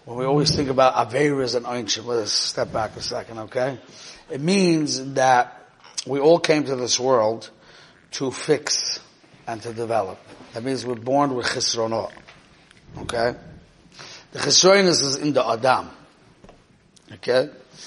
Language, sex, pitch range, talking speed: English, male, 125-160 Hz, 145 wpm